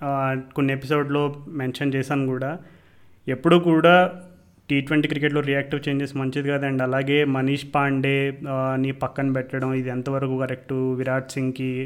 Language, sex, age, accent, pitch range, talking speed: Telugu, male, 30-49, native, 135-155 Hz, 120 wpm